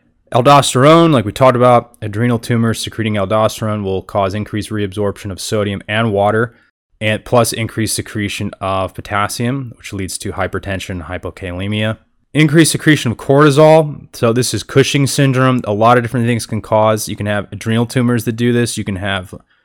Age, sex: 20-39, male